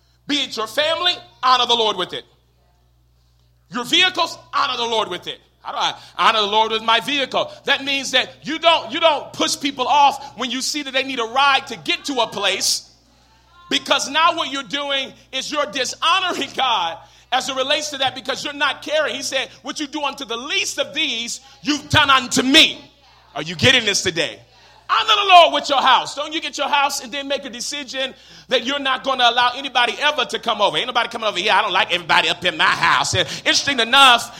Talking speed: 220 wpm